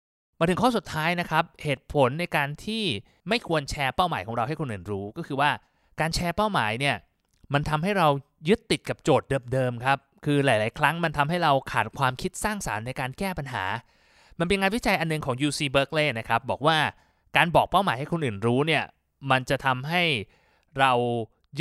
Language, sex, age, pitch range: Thai, male, 20-39, 125-170 Hz